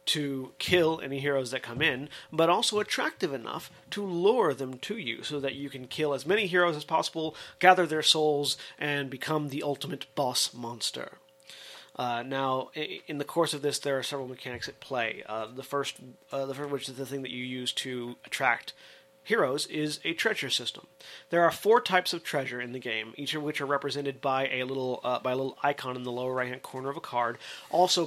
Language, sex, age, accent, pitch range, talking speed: English, male, 30-49, American, 130-160 Hz, 215 wpm